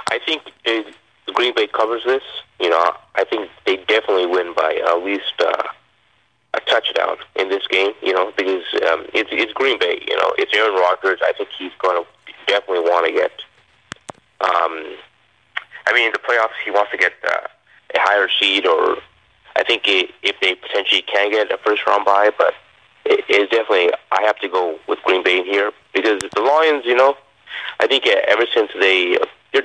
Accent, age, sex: American, 30-49, male